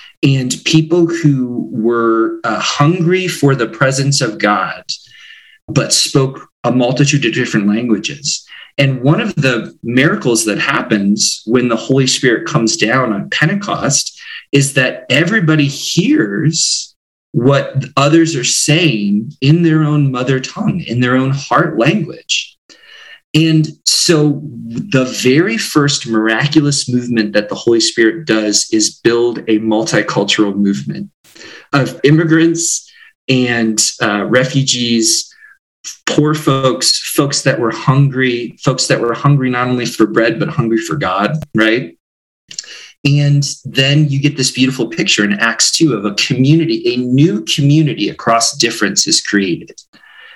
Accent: American